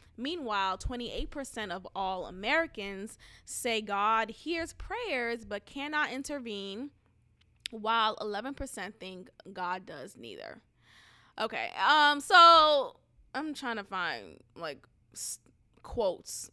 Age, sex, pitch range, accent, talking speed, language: 20-39, female, 195-250 Hz, American, 100 wpm, English